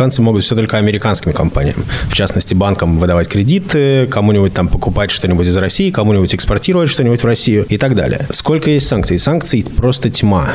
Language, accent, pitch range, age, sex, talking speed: Russian, native, 100-120 Hz, 20-39, male, 175 wpm